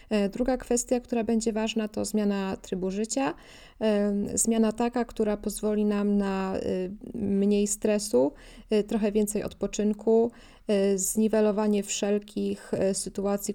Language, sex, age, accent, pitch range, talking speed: Polish, female, 20-39, native, 195-215 Hz, 100 wpm